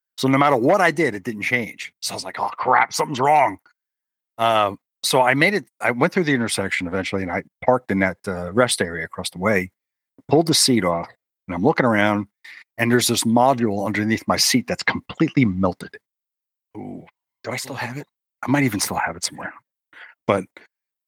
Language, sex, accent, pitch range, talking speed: English, male, American, 105-175 Hz, 200 wpm